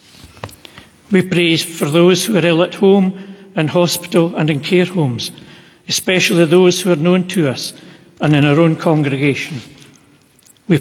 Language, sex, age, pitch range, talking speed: English, male, 60-79, 150-180 Hz, 155 wpm